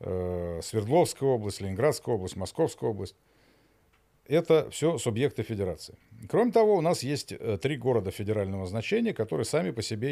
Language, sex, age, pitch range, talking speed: Russian, male, 50-69, 100-140 Hz, 135 wpm